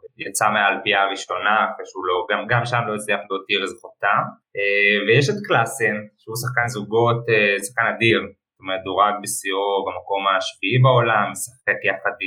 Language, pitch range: Hebrew, 105-130 Hz